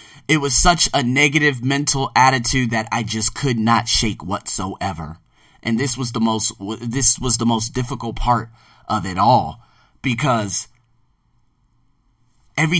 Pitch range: 105-130 Hz